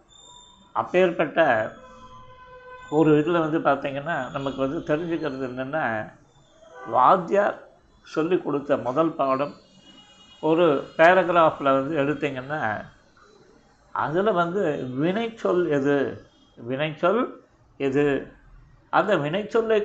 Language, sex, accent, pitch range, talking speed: Tamil, male, native, 145-165 Hz, 80 wpm